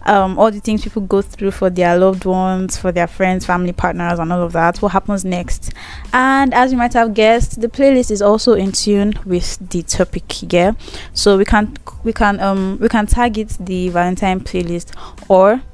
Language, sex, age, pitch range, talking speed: English, female, 10-29, 185-225 Hz, 200 wpm